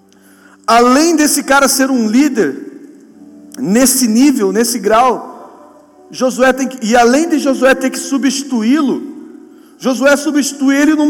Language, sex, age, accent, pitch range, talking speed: Portuguese, male, 40-59, Brazilian, 245-295 Hz, 130 wpm